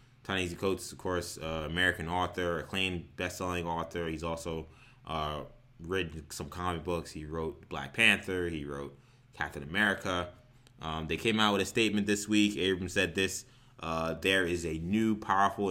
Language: English